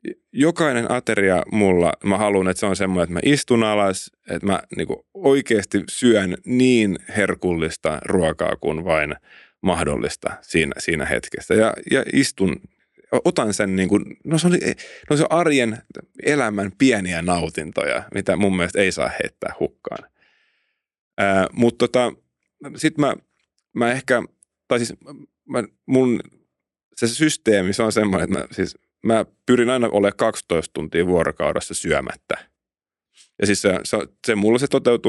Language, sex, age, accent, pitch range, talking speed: Finnish, male, 30-49, native, 90-120 Hz, 145 wpm